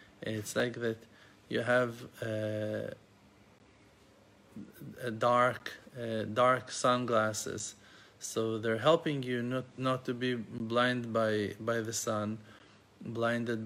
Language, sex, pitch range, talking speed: English, male, 110-125 Hz, 110 wpm